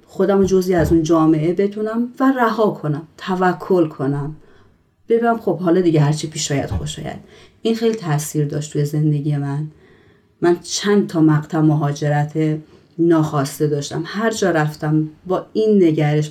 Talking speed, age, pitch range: 140 wpm, 30-49, 150-190 Hz